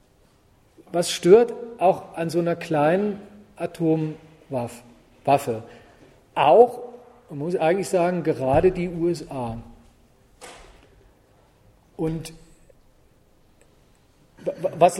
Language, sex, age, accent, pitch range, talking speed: German, male, 40-59, German, 145-200 Hz, 70 wpm